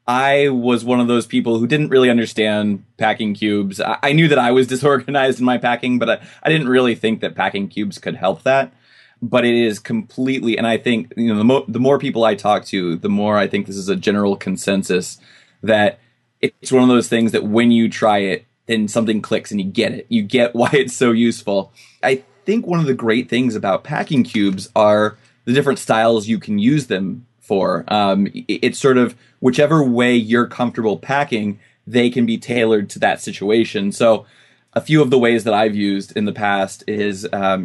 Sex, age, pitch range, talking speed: male, 20-39, 105-125 Hz, 215 wpm